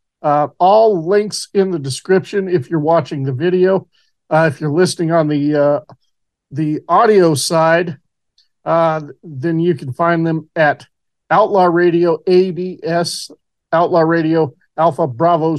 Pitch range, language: 155-180 Hz, English